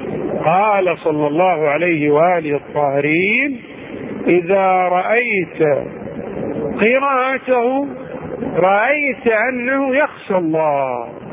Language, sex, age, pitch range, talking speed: Arabic, male, 50-69, 195-245 Hz, 70 wpm